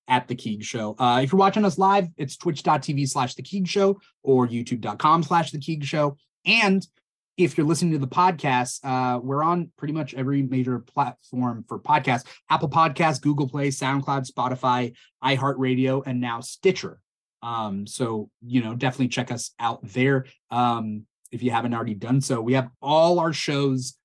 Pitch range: 125-160 Hz